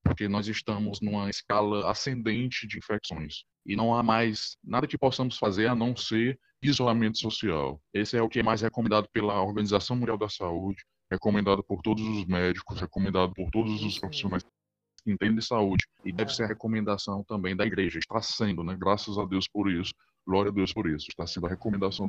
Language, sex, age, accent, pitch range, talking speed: Portuguese, male, 20-39, Brazilian, 95-110 Hz, 195 wpm